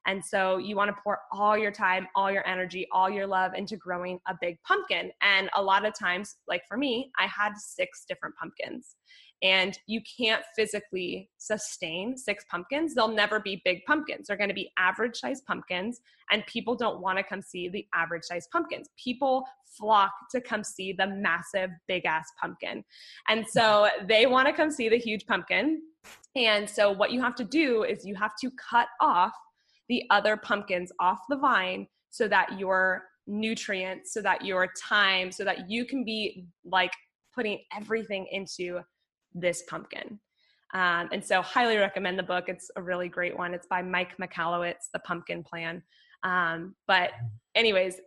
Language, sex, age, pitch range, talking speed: English, female, 20-39, 185-225 Hz, 180 wpm